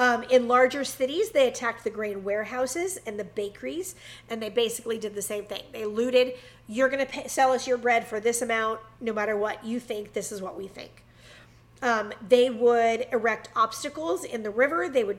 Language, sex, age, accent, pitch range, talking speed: English, female, 40-59, American, 215-260 Hz, 200 wpm